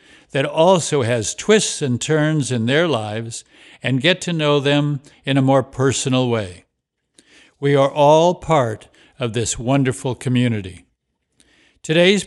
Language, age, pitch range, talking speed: English, 60-79, 125-160 Hz, 135 wpm